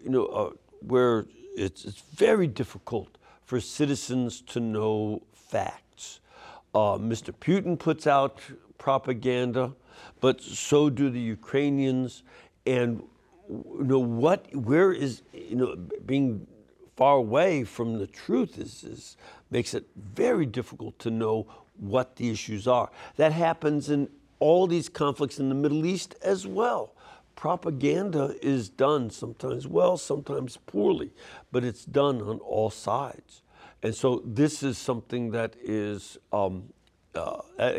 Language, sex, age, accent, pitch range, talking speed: English, male, 60-79, American, 115-150 Hz, 130 wpm